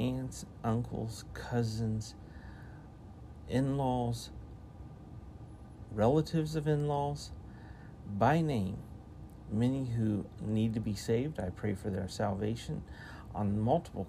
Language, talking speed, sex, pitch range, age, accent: English, 95 wpm, male, 100-120 Hz, 50-69, American